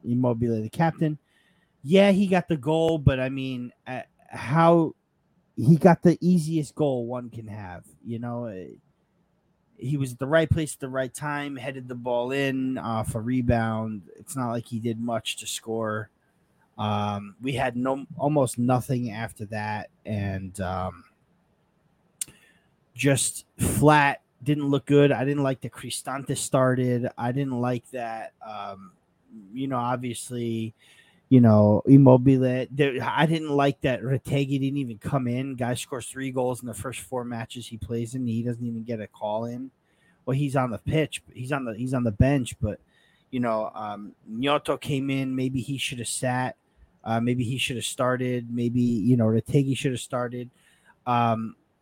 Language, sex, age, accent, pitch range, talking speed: English, male, 30-49, American, 115-145 Hz, 175 wpm